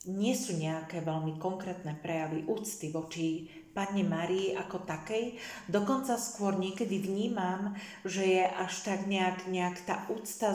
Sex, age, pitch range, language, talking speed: female, 40-59, 180-210 Hz, Slovak, 135 wpm